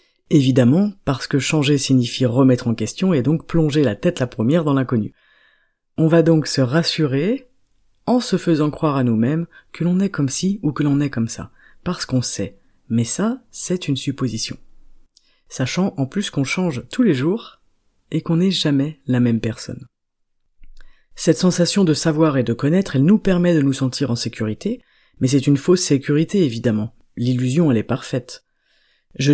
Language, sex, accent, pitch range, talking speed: French, female, French, 130-170 Hz, 180 wpm